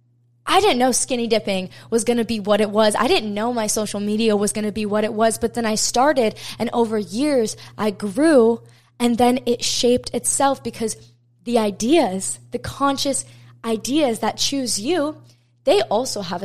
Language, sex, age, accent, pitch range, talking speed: English, female, 20-39, American, 200-245 Hz, 185 wpm